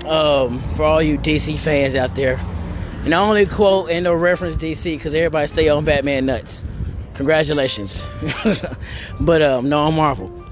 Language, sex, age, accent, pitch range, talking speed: English, male, 20-39, American, 100-165 Hz, 160 wpm